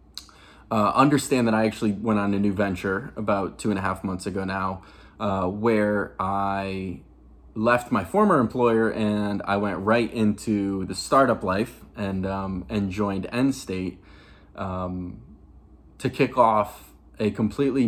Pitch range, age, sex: 95-115 Hz, 20-39, male